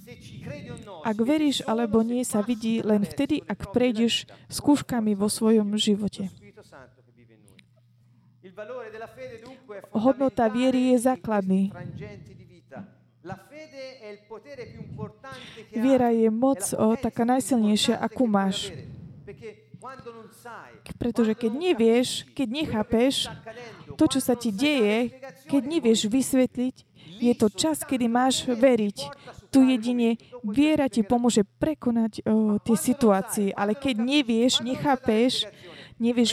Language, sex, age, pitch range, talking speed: Slovak, female, 20-39, 210-265 Hz, 95 wpm